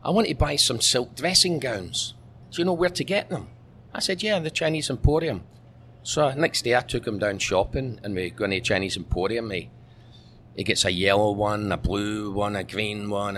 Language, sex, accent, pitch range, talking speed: English, male, British, 115-155 Hz, 215 wpm